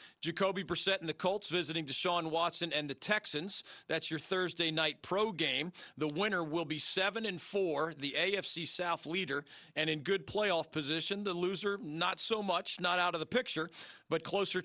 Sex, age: male, 40-59